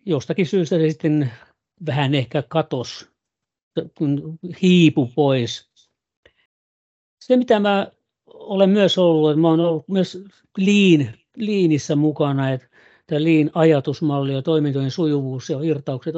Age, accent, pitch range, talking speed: 60-79, native, 135-165 Hz, 110 wpm